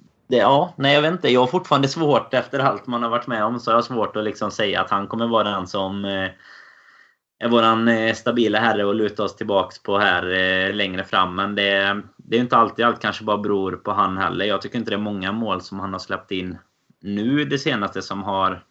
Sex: male